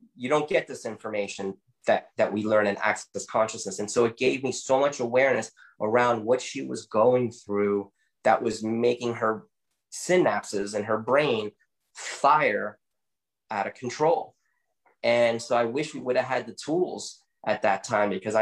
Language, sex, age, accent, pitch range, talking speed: English, male, 20-39, American, 105-120 Hz, 170 wpm